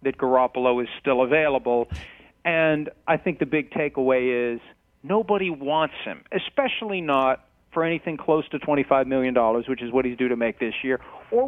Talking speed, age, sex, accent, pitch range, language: 170 wpm, 50-69, male, American, 135-170 Hz, English